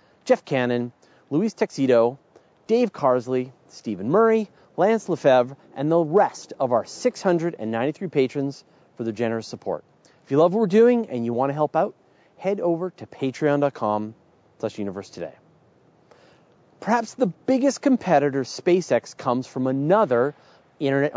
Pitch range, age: 120-185 Hz, 30-49